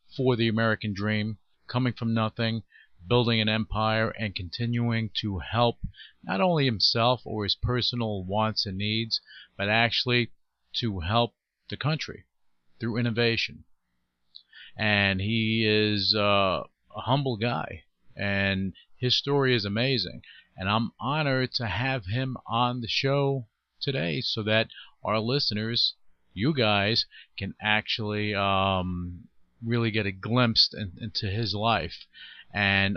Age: 40-59